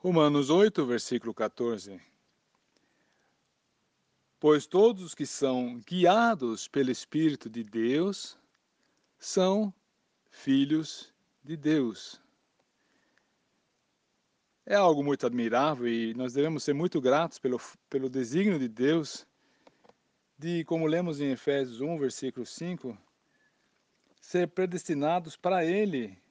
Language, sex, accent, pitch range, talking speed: Portuguese, male, Brazilian, 130-180 Hz, 105 wpm